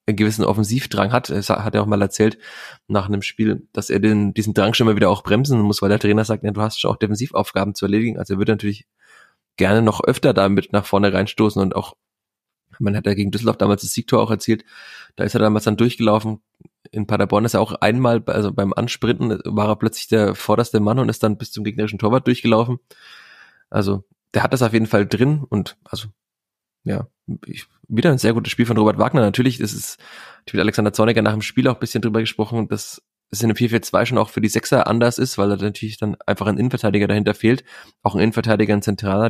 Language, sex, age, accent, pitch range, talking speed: German, male, 20-39, German, 100-115 Hz, 230 wpm